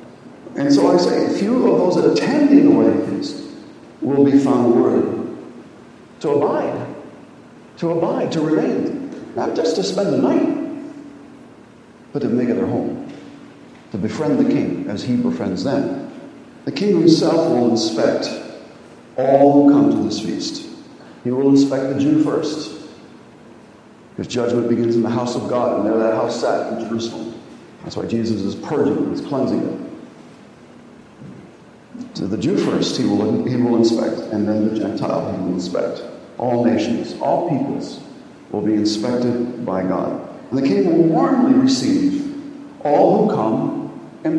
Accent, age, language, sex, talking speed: American, 50-69, English, male, 160 wpm